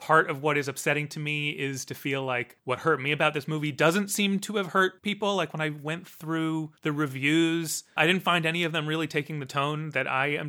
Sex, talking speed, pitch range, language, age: male, 245 wpm, 130-160 Hz, English, 30-49